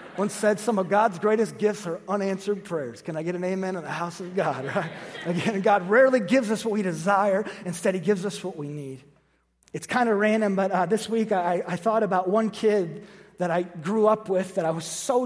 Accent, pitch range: American, 180-220 Hz